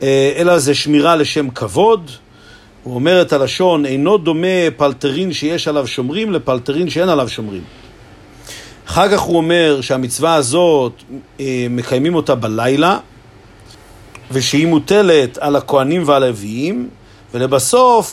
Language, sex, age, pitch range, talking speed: Hebrew, male, 50-69, 130-175 Hz, 115 wpm